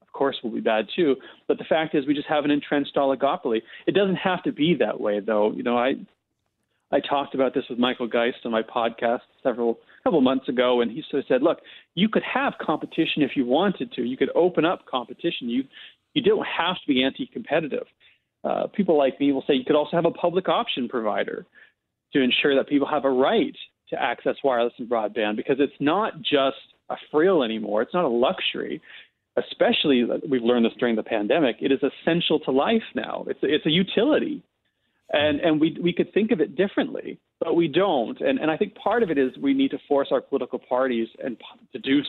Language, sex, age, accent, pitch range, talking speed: English, male, 30-49, American, 120-160 Hz, 210 wpm